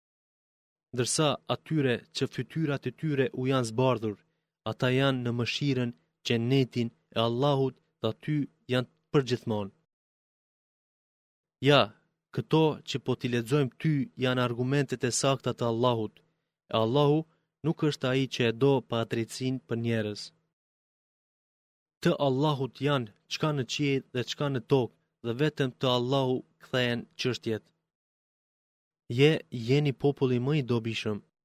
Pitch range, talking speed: 120-140 Hz, 125 wpm